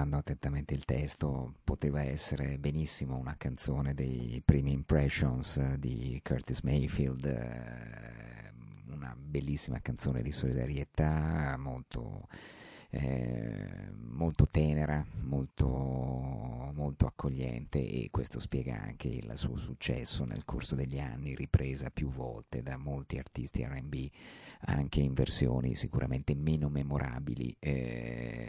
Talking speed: 105 wpm